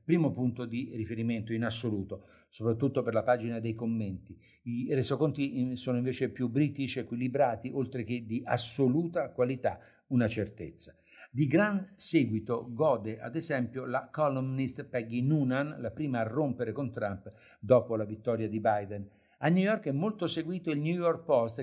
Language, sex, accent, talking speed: Italian, male, native, 160 wpm